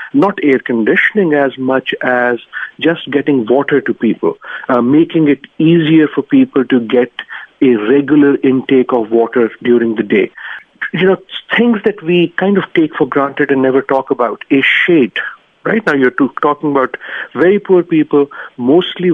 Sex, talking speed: male, 165 wpm